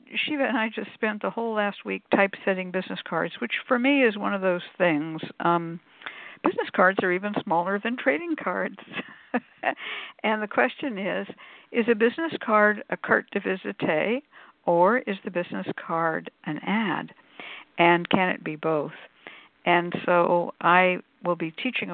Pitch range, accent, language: 175-220 Hz, American, English